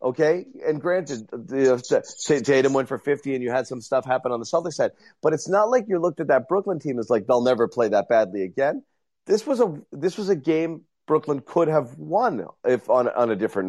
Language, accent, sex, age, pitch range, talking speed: English, American, male, 30-49, 115-155 Hz, 230 wpm